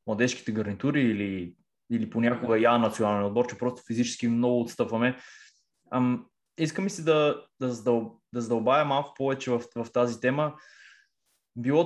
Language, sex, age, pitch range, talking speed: Bulgarian, male, 20-39, 115-140 Hz, 135 wpm